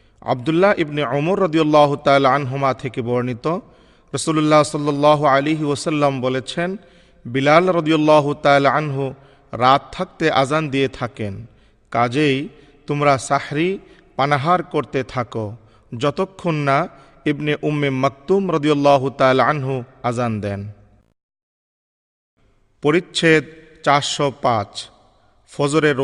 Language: Bengali